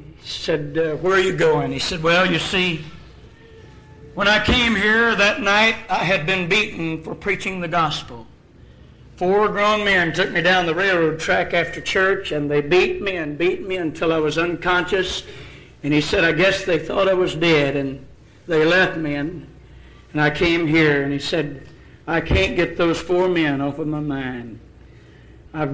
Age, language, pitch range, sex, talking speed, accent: 60-79, English, 150-185 Hz, male, 185 wpm, American